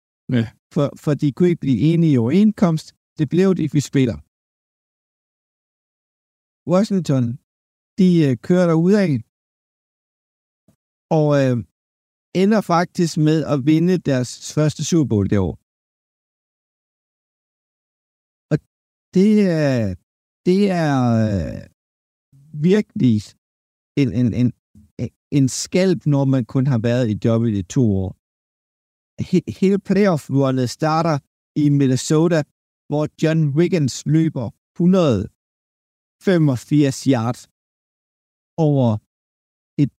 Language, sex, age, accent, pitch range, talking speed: Danish, male, 60-79, native, 105-160 Hz, 105 wpm